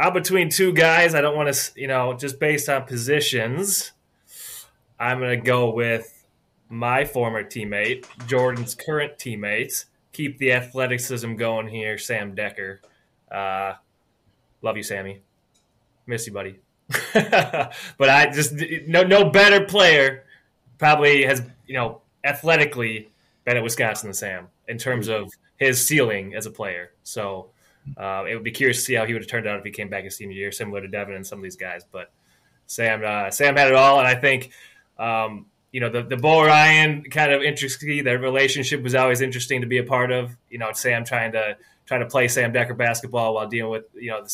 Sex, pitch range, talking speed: male, 110-135 Hz, 190 wpm